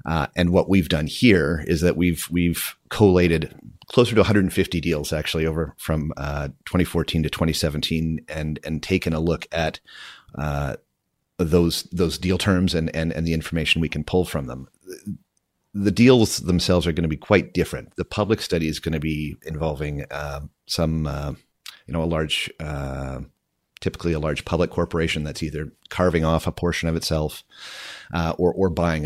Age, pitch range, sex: 40-59, 75-85 Hz, male